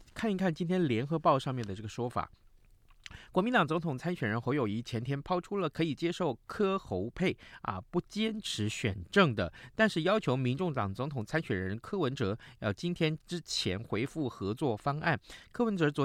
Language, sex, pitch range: Chinese, male, 105-160 Hz